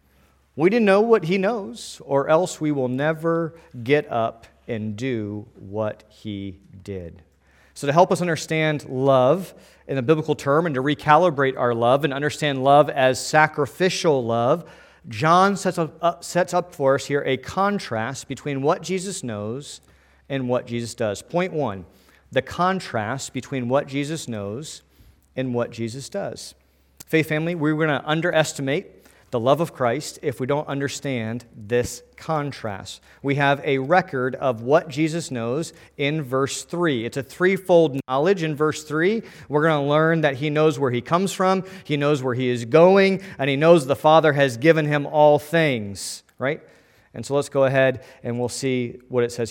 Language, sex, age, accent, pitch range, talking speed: English, male, 40-59, American, 120-160 Hz, 175 wpm